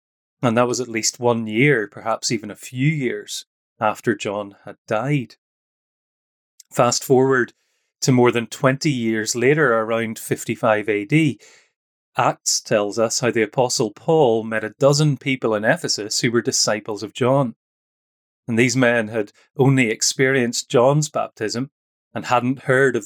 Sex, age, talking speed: male, 30-49, 150 wpm